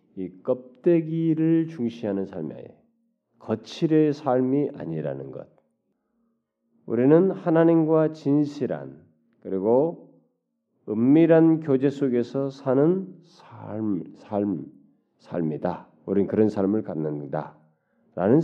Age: 40-59